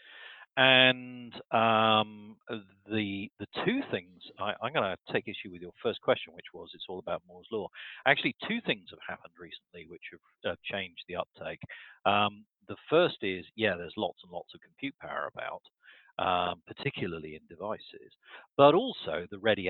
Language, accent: English, British